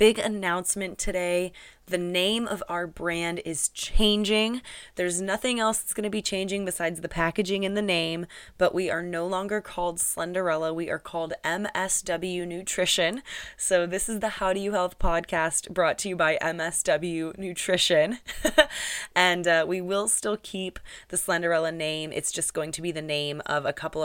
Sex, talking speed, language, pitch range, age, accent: female, 175 wpm, English, 160-185 Hz, 20-39, American